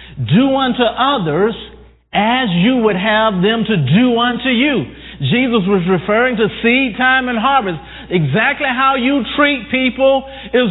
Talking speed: 145 wpm